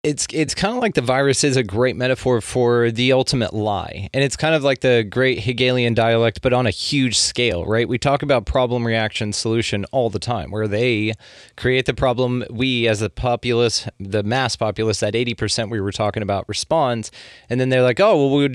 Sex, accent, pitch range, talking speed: male, American, 110-130 Hz, 210 wpm